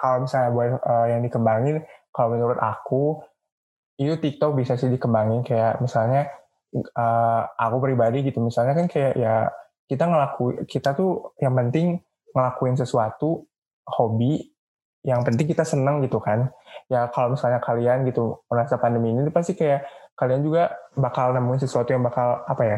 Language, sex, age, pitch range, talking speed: Indonesian, male, 20-39, 120-145 Hz, 155 wpm